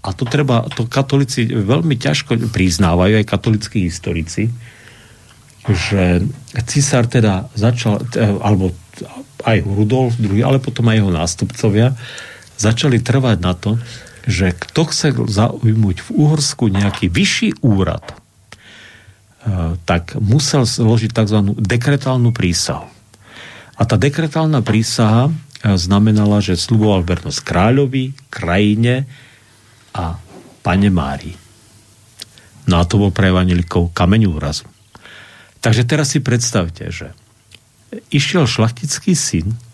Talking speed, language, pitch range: 105 wpm, Slovak, 95-120 Hz